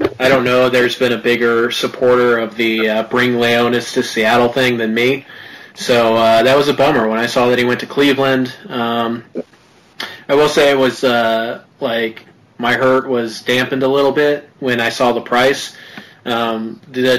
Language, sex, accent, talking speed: English, male, American, 190 wpm